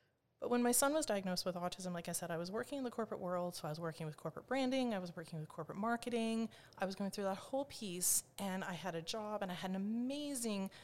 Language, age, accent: English, 30-49, American